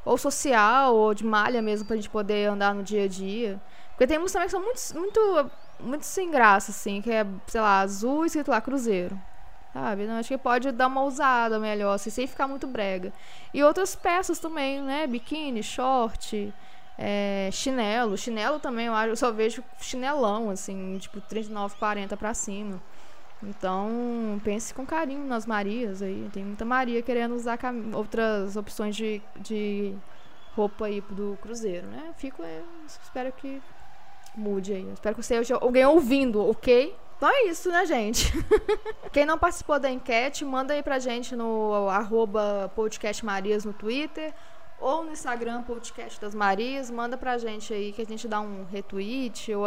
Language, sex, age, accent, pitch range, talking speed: Portuguese, female, 10-29, Brazilian, 205-270 Hz, 170 wpm